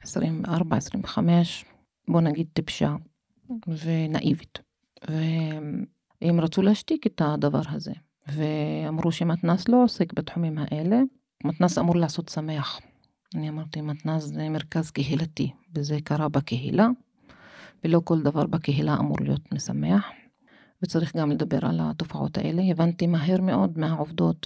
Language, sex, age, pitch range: Hebrew, female, 40-59, 155-195 Hz